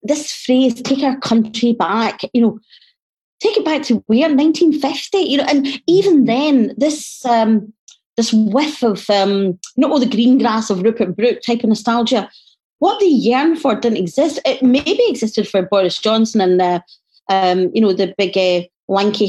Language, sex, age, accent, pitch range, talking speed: English, female, 30-49, British, 190-255 Hz, 190 wpm